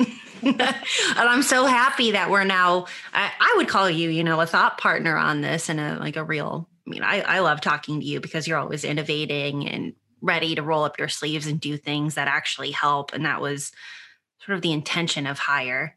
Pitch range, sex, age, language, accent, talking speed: 155-195 Hz, female, 20-39, English, American, 220 wpm